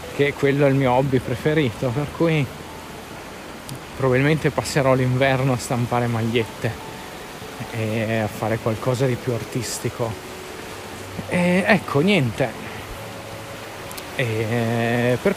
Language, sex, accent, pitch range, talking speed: Italian, male, native, 125-160 Hz, 95 wpm